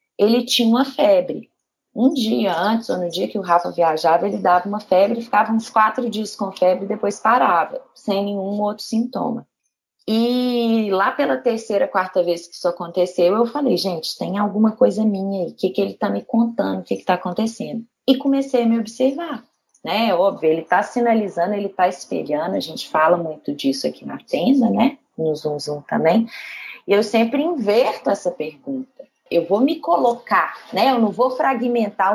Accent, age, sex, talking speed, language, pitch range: Brazilian, 20-39, female, 190 wpm, Portuguese, 190-255 Hz